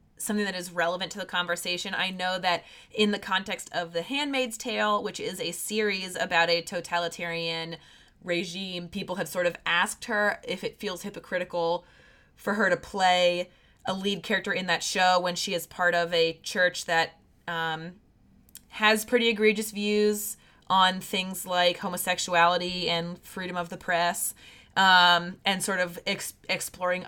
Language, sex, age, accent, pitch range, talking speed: English, female, 20-39, American, 175-215 Hz, 160 wpm